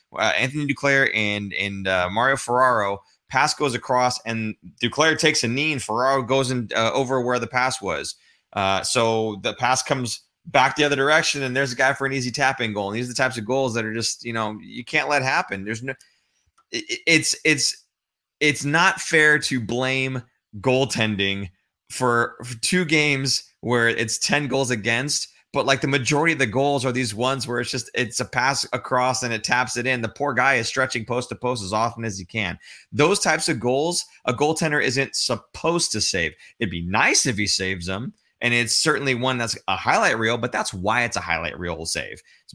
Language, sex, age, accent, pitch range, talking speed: English, male, 20-39, American, 110-135 Hz, 210 wpm